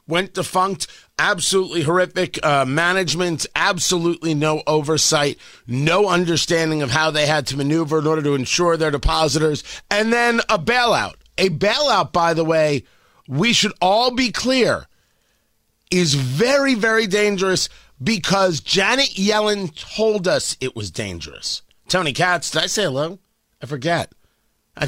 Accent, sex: American, male